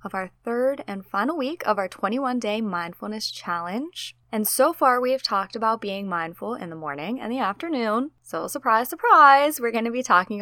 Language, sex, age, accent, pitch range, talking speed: English, female, 20-39, American, 180-235 Hz, 195 wpm